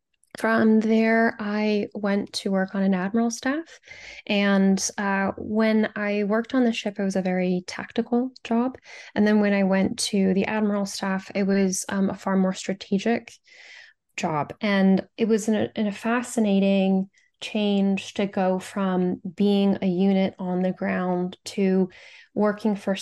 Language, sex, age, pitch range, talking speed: English, female, 10-29, 185-215 Hz, 155 wpm